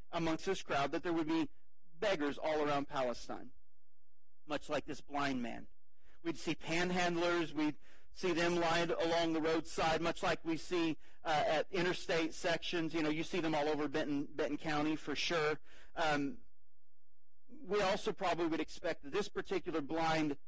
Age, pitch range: 40-59, 145-210 Hz